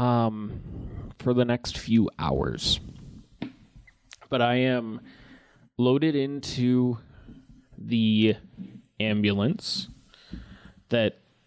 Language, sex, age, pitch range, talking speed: English, male, 20-39, 110-140 Hz, 75 wpm